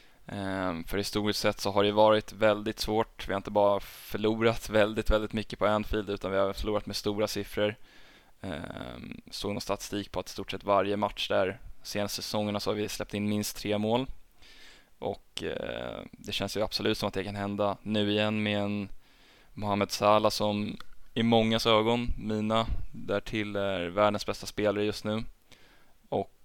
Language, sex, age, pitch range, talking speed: Swedish, male, 20-39, 100-110 Hz, 180 wpm